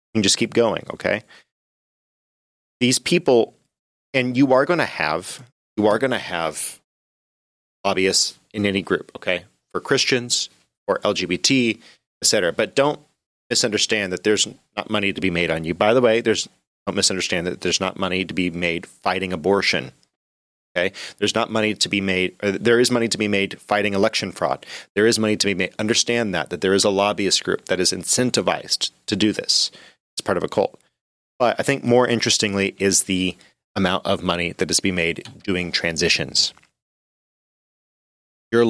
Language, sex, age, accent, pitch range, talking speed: English, male, 30-49, American, 95-115 Hz, 180 wpm